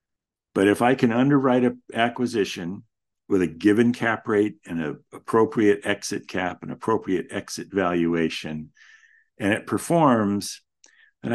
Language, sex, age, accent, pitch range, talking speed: English, male, 50-69, American, 80-120 Hz, 130 wpm